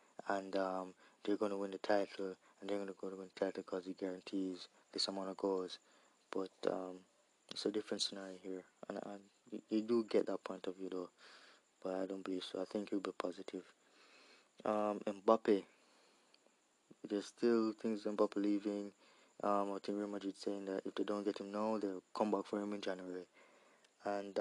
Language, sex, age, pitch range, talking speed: English, male, 20-39, 95-115 Hz, 195 wpm